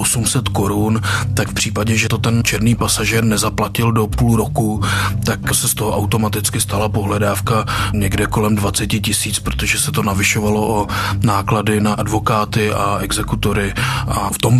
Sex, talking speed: male, 155 wpm